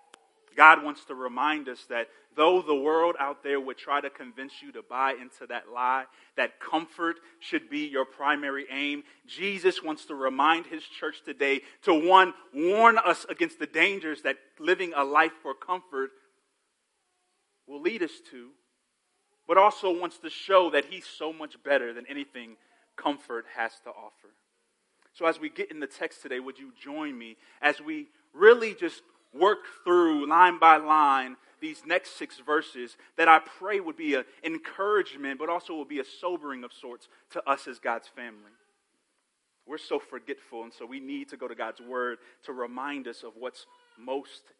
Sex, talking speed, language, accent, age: male, 175 wpm, English, American, 30-49